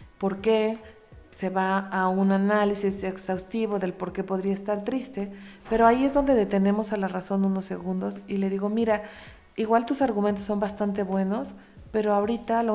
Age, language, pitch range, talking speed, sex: 40-59, Spanish, 195-220 Hz, 175 wpm, female